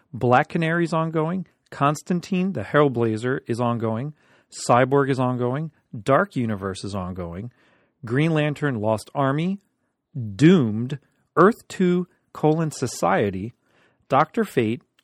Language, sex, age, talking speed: English, male, 40-59, 105 wpm